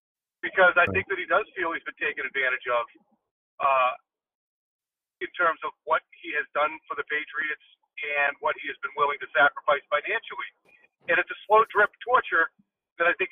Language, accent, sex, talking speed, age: English, American, male, 180 wpm, 40-59